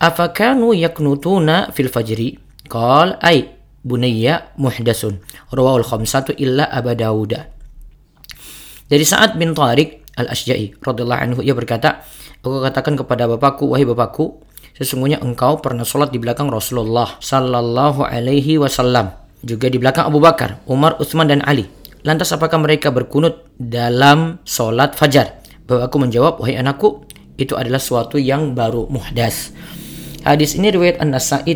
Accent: native